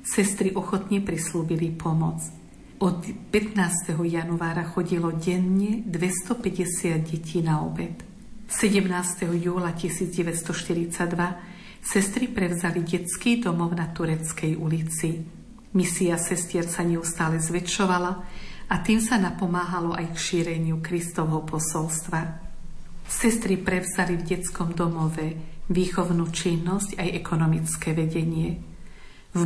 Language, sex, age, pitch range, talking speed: Slovak, female, 50-69, 165-185 Hz, 100 wpm